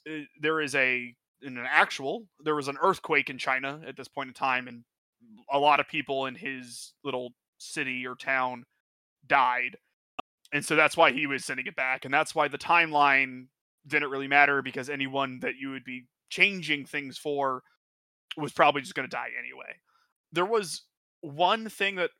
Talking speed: 180 wpm